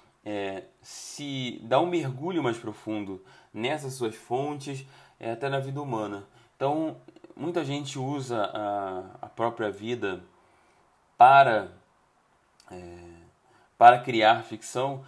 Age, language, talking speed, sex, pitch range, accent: 20-39, Portuguese, 100 wpm, male, 110-145 Hz, Brazilian